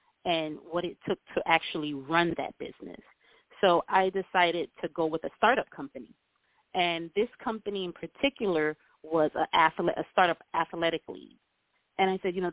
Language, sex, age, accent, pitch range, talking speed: English, female, 30-49, American, 160-195 Hz, 165 wpm